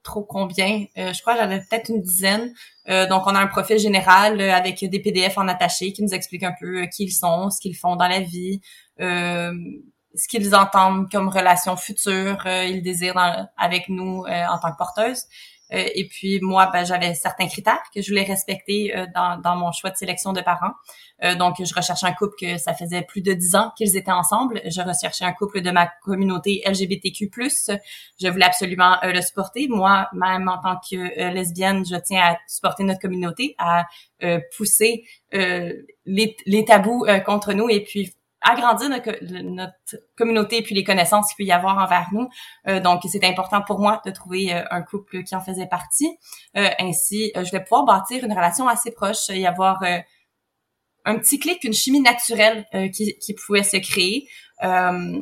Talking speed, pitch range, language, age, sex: 195 wpm, 180-215 Hz, French, 20-39, female